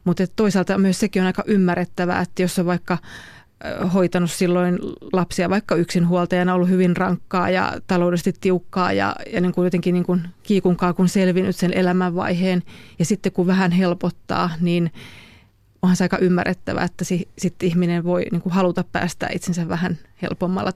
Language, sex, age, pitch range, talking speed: Finnish, female, 30-49, 180-185 Hz, 160 wpm